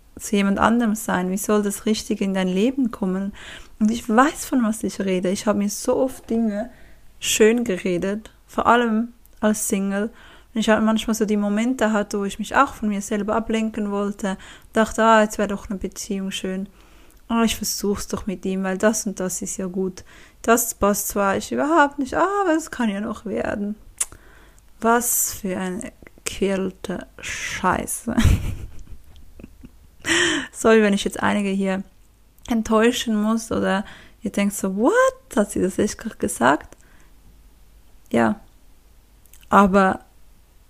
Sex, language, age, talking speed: female, German, 20-39, 160 wpm